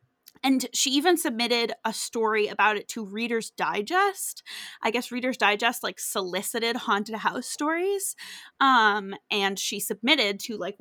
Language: English